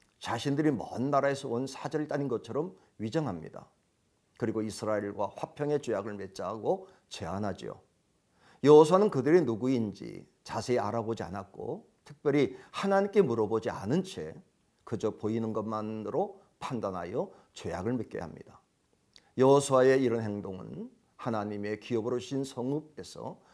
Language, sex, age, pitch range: Korean, male, 50-69, 105-150 Hz